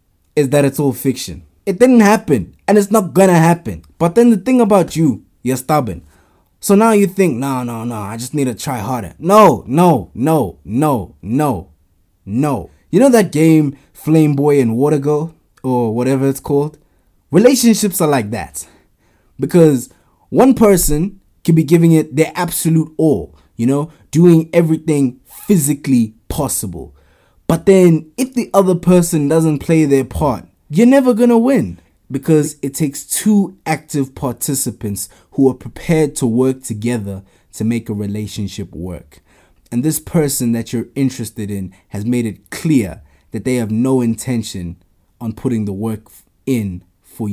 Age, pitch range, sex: 20-39, 110-160 Hz, male